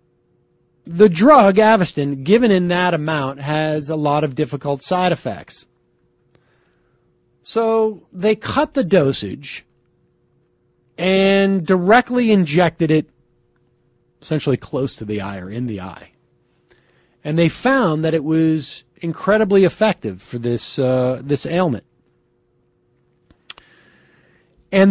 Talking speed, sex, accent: 110 wpm, male, American